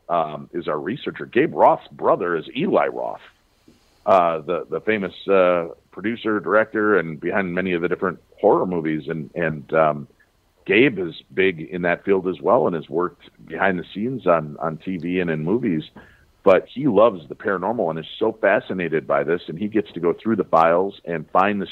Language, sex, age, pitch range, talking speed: English, male, 50-69, 80-100 Hz, 195 wpm